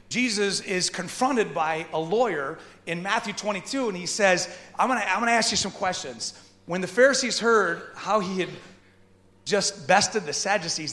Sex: male